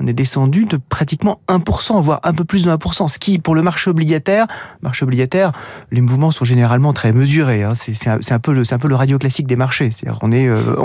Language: French